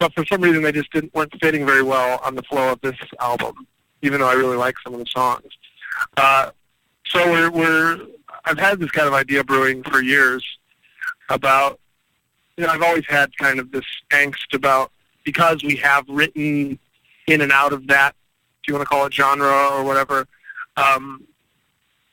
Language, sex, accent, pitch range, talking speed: English, male, American, 135-155 Hz, 190 wpm